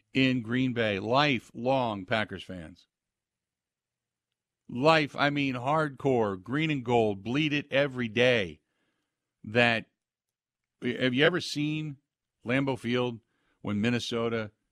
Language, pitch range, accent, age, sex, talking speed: English, 110-135 Hz, American, 50-69, male, 105 wpm